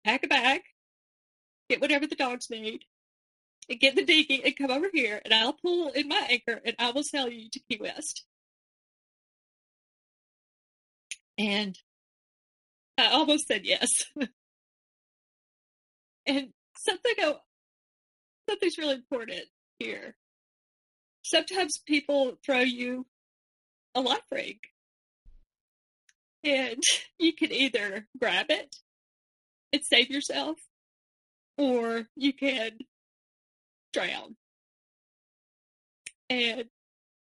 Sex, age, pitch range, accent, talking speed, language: female, 30-49, 235-295 Hz, American, 100 wpm, English